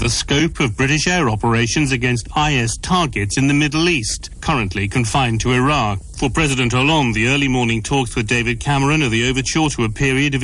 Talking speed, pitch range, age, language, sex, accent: 195 wpm, 125-185 Hz, 40-59, English, male, British